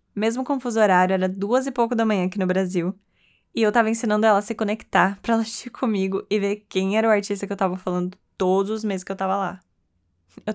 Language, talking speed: Portuguese, 245 wpm